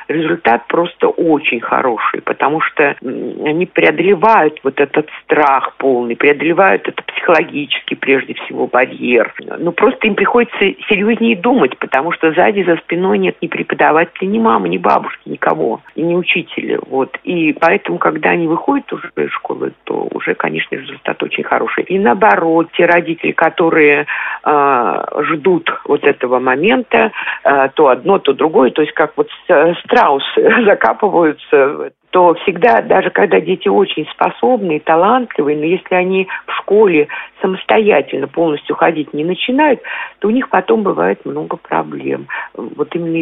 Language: Russian